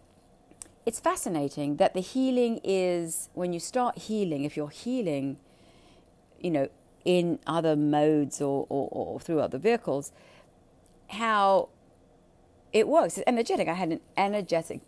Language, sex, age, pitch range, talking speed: English, female, 40-59, 145-205 Hz, 135 wpm